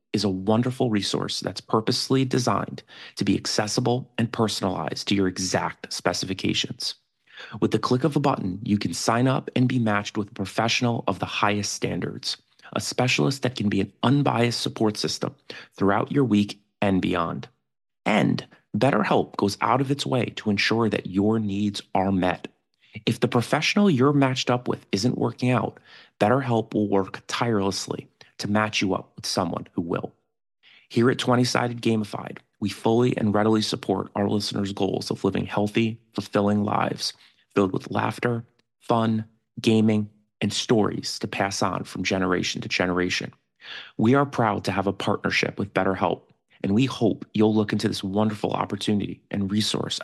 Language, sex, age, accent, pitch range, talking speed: English, male, 30-49, American, 100-120 Hz, 165 wpm